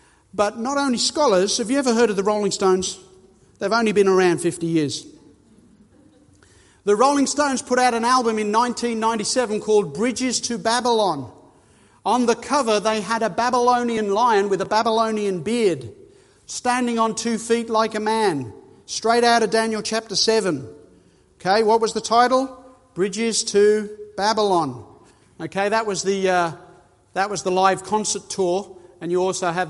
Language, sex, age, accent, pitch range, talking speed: English, male, 40-59, Australian, 190-235 Hz, 155 wpm